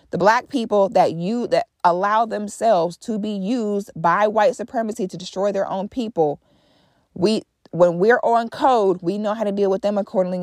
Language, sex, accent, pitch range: English, female, American, 180-215 Hz